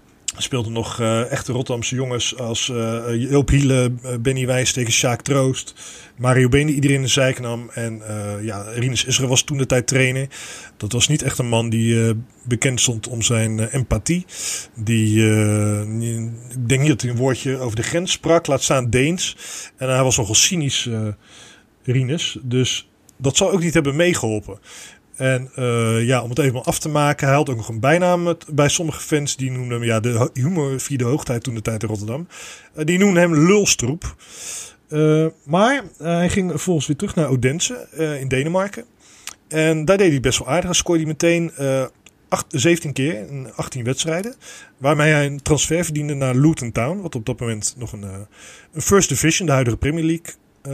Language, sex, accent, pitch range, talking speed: Dutch, male, Dutch, 120-155 Hz, 200 wpm